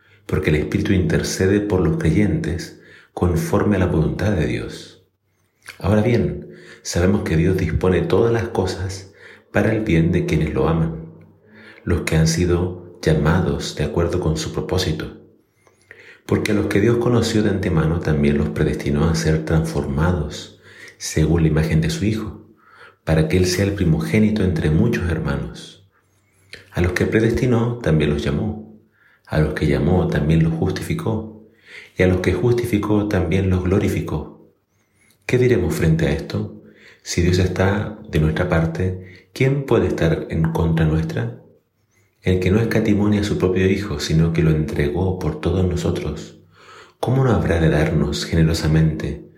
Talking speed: 155 wpm